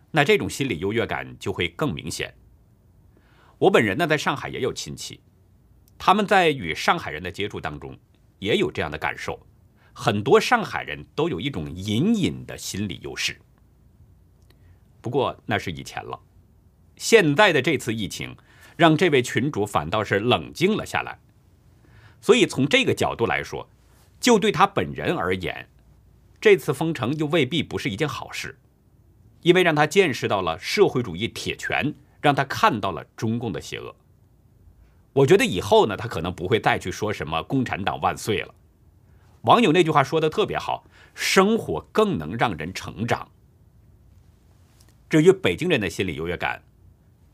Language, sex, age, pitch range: Chinese, male, 50-69, 95-145 Hz